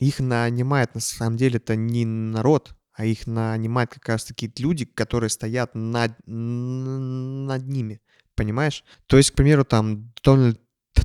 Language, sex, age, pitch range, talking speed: Russian, male, 20-39, 110-130 Hz, 145 wpm